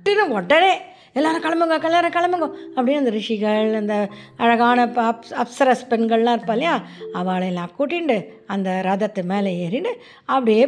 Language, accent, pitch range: Tamil, native, 195-275 Hz